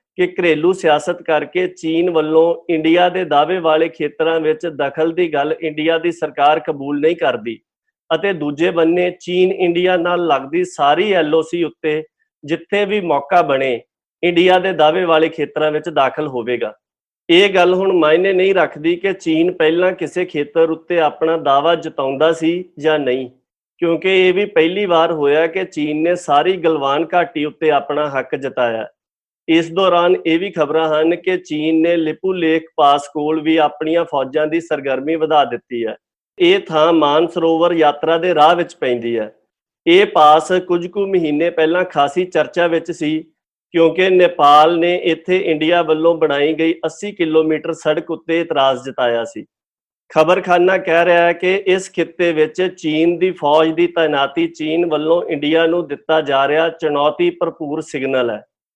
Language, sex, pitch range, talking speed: Punjabi, male, 155-175 Hz, 145 wpm